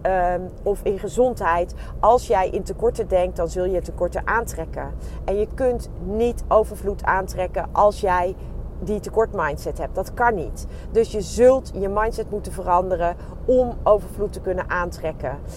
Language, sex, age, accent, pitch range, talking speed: Dutch, female, 40-59, Dutch, 180-230 Hz, 155 wpm